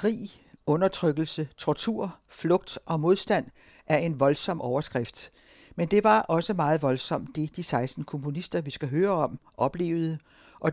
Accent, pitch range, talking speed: native, 145-185 Hz, 145 wpm